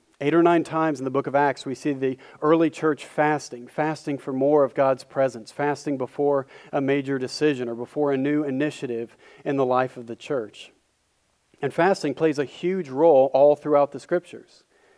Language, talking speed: English, 190 wpm